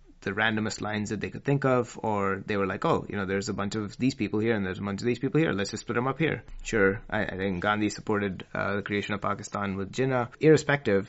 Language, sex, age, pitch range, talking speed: English, male, 30-49, 100-115 Hz, 270 wpm